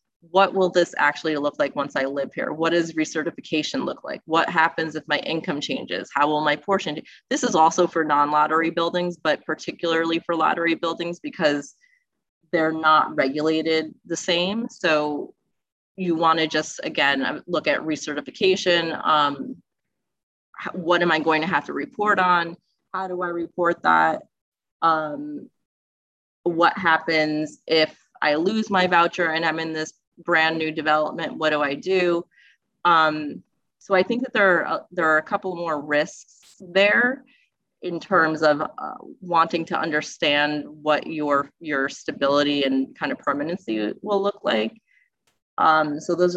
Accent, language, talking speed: American, English, 155 wpm